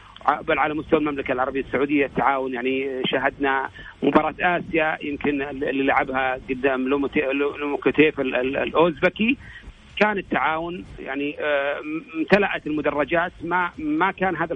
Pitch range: 145-180 Hz